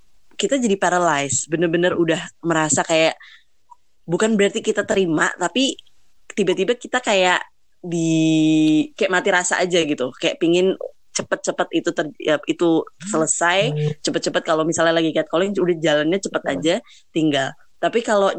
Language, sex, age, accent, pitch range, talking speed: Indonesian, female, 20-39, native, 155-180 Hz, 135 wpm